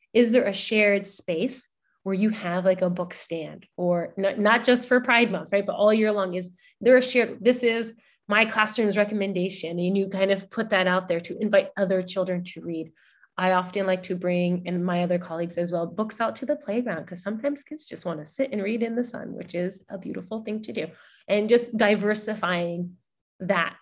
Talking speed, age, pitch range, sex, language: 215 wpm, 20-39, 180-220 Hz, female, English